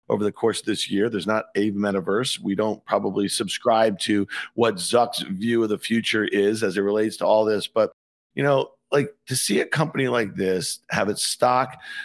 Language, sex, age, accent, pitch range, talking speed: English, male, 50-69, American, 110-130 Hz, 205 wpm